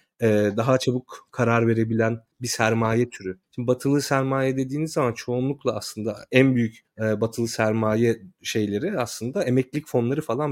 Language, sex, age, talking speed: Turkish, male, 30-49, 130 wpm